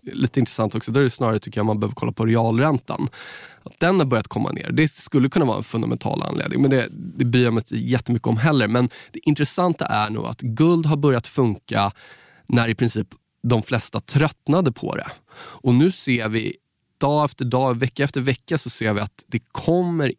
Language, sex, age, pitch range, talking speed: Swedish, male, 20-39, 110-140 Hz, 205 wpm